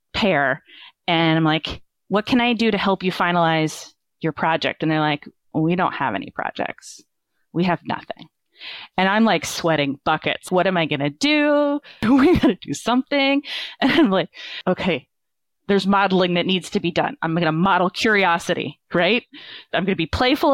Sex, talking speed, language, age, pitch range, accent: female, 185 wpm, English, 30-49, 165-220 Hz, American